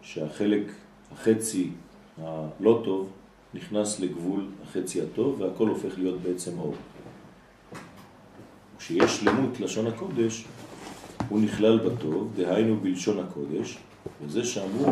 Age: 40-59